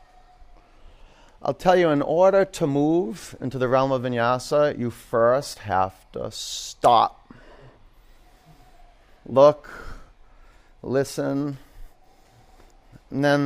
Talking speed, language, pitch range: 95 wpm, English, 125-165 Hz